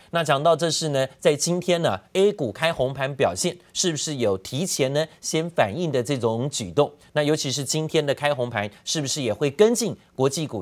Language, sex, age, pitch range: Chinese, male, 30-49, 125-185 Hz